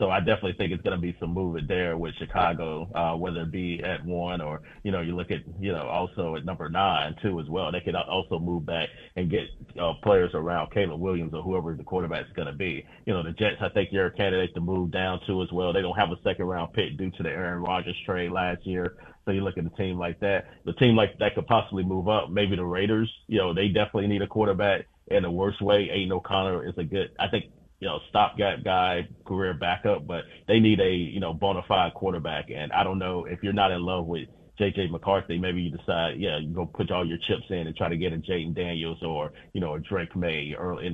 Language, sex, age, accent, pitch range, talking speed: English, male, 30-49, American, 85-100 Hz, 260 wpm